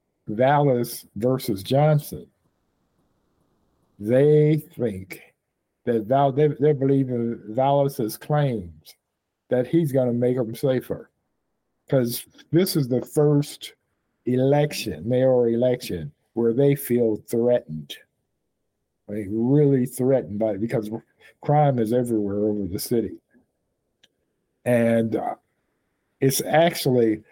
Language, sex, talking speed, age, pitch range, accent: English, male, 95 wpm, 50-69, 115-140 Hz, American